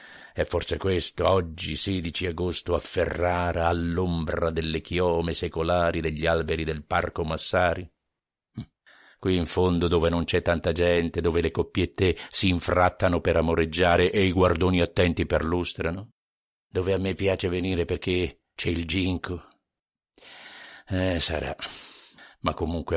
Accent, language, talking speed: native, Italian, 130 wpm